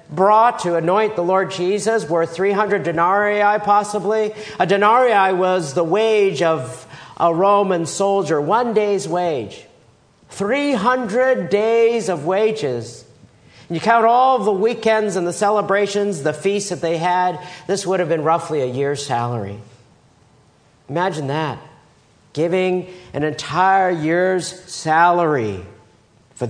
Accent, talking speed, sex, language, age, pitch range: American, 130 wpm, male, English, 50-69, 135-195 Hz